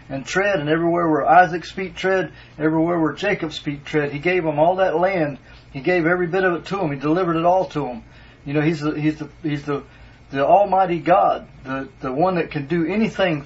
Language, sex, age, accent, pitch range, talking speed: English, male, 40-59, American, 145-185 Hz, 225 wpm